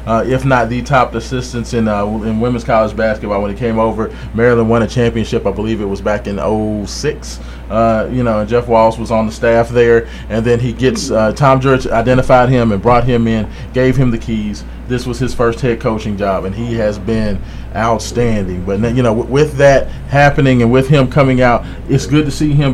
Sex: male